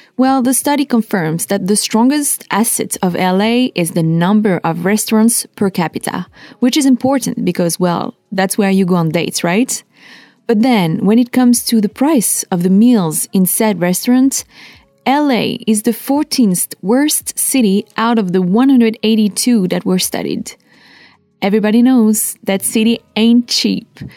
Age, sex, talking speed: 20-39, female, 155 wpm